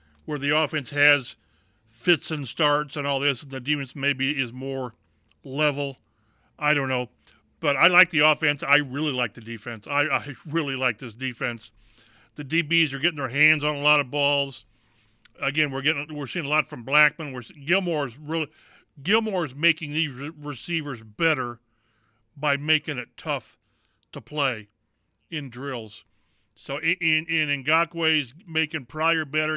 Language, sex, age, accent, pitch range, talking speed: English, male, 40-59, American, 130-160 Hz, 165 wpm